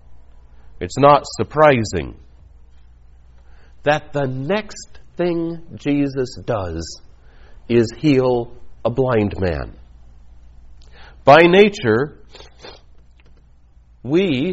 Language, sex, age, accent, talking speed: English, male, 60-79, American, 70 wpm